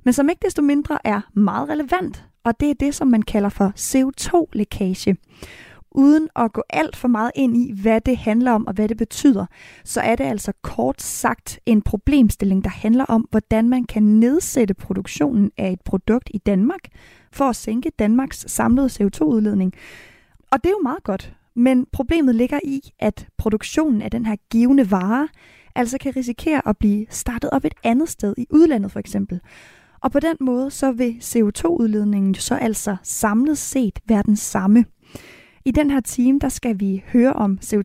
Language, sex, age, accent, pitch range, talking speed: Danish, female, 20-39, native, 215-270 Hz, 180 wpm